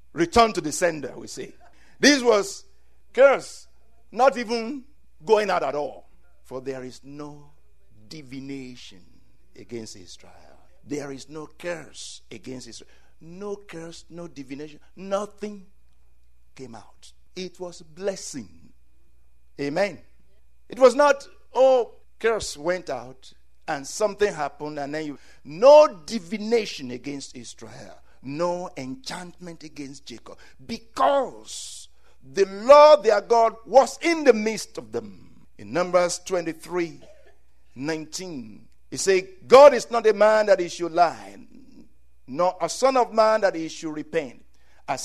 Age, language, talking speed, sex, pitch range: 60-79, English, 130 wpm, male, 130-205 Hz